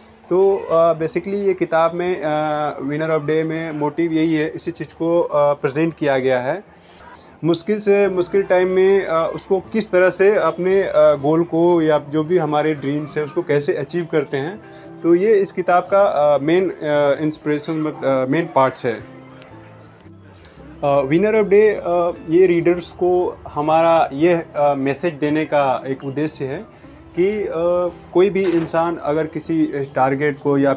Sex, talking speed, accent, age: male, 155 wpm, native, 30-49